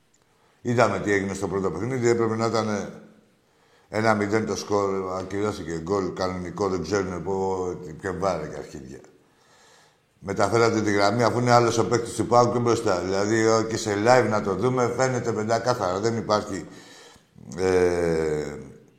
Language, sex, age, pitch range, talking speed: Greek, male, 60-79, 95-120 Hz, 140 wpm